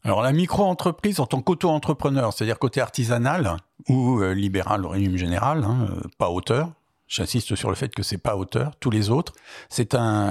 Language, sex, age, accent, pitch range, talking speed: French, male, 60-79, French, 100-135 Hz, 180 wpm